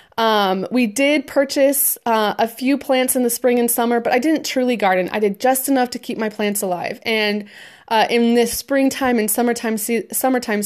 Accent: American